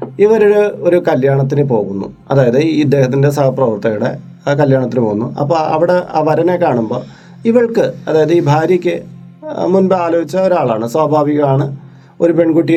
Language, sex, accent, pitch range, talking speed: Malayalam, male, native, 145-205 Hz, 115 wpm